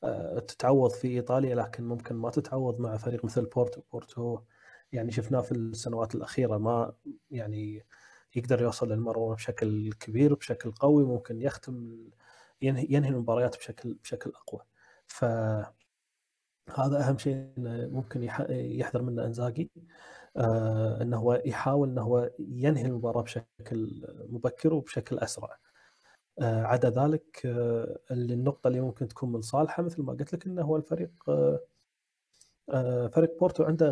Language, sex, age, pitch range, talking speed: Arabic, male, 30-49, 115-145 Hz, 125 wpm